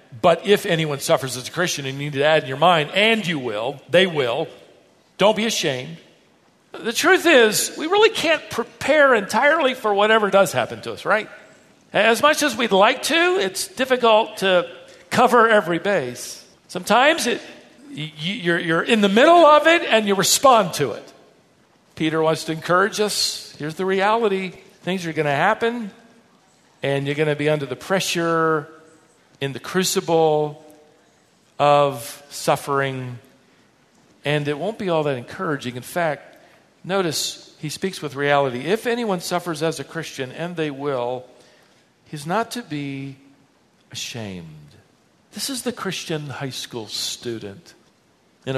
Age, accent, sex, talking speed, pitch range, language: 50-69, American, male, 155 wpm, 140-200 Hz, English